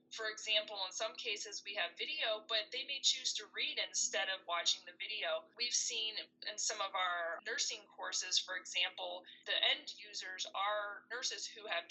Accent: American